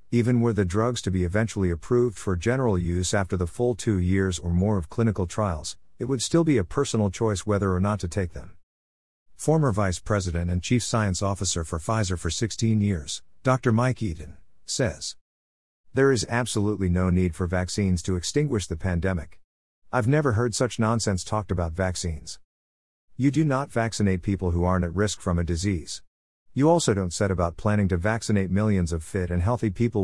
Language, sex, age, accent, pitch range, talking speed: English, male, 50-69, American, 90-115 Hz, 190 wpm